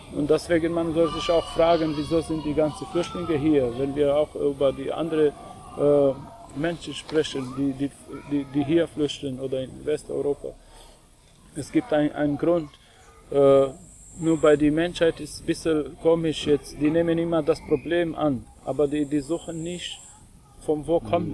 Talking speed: 170 wpm